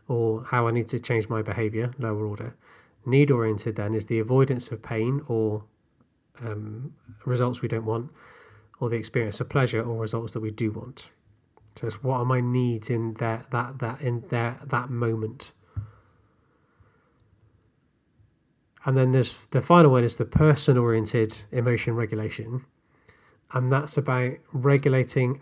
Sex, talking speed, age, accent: male, 155 wpm, 30-49, British